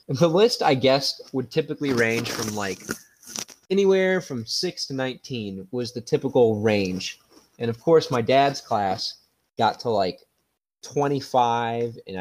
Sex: male